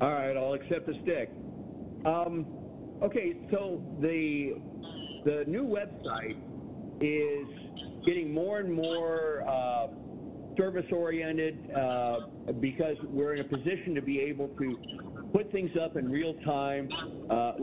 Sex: male